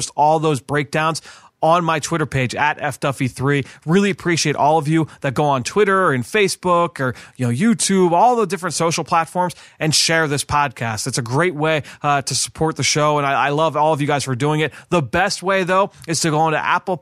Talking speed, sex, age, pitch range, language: 220 wpm, male, 30-49, 140-170 Hz, English